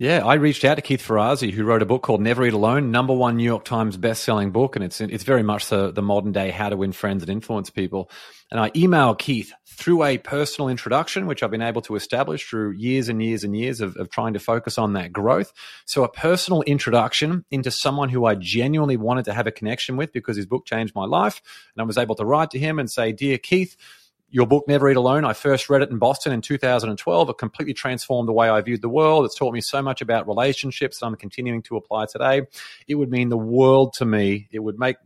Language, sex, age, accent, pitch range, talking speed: English, male, 30-49, Australian, 110-135 Hz, 245 wpm